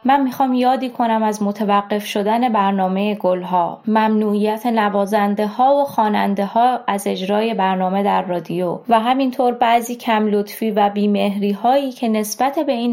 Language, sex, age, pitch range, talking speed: Persian, female, 20-39, 200-250 Hz, 150 wpm